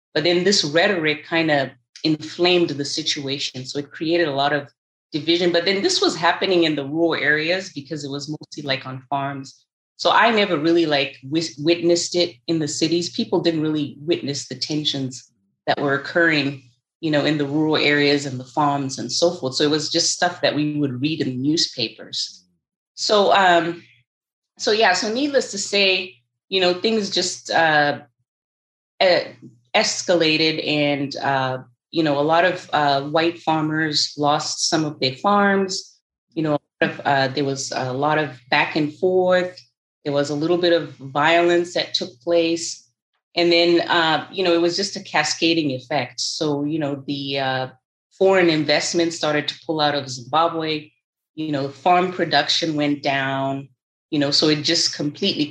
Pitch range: 140-170 Hz